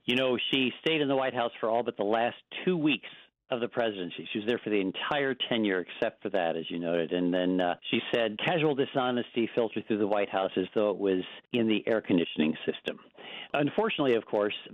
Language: English